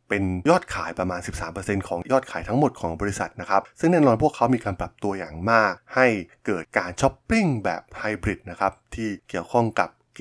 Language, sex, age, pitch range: Thai, male, 20-39, 95-115 Hz